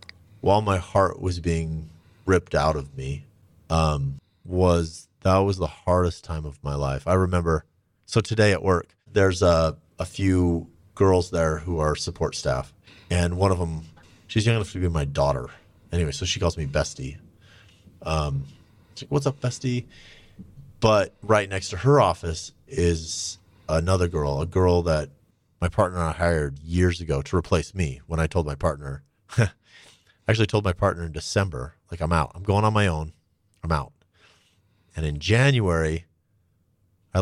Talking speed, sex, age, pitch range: 170 wpm, male, 30-49, 80-100 Hz